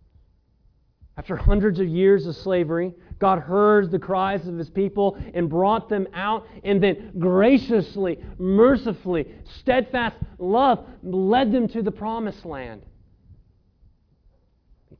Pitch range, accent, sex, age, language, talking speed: 125-190 Hz, American, male, 40-59, English, 120 wpm